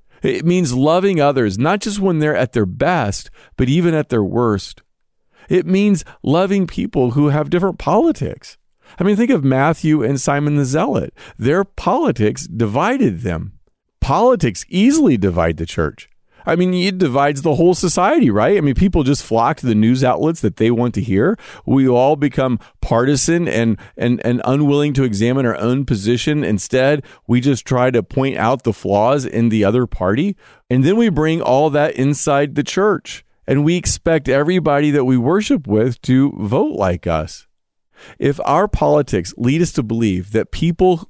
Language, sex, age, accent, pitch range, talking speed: English, male, 40-59, American, 115-155 Hz, 175 wpm